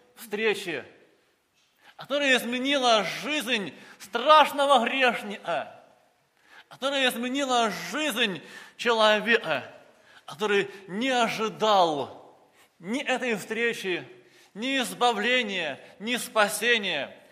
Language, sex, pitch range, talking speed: Russian, male, 195-250 Hz, 70 wpm